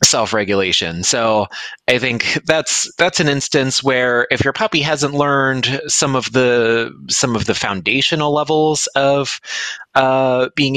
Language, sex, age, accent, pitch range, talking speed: English, male, 20-39, American, 115-140 Hz, 145 wpm